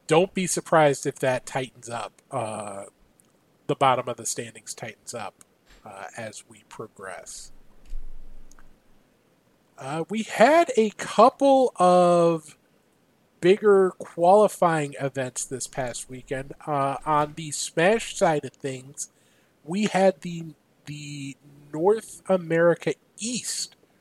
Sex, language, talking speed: male, English, 110 wpm